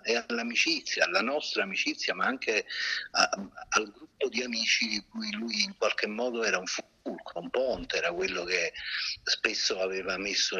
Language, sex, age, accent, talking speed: Italian, male, 50-69, native, 165 wpm